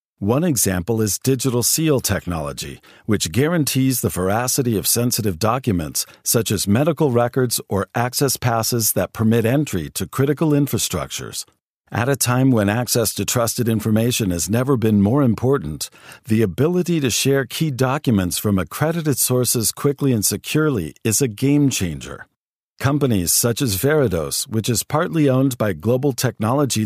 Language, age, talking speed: English, 50-69, 145 wpm